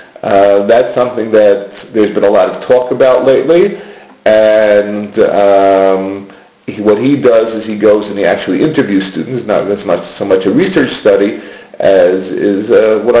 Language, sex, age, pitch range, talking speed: English, male, 40-59, 100-125 Hz, 175 wpm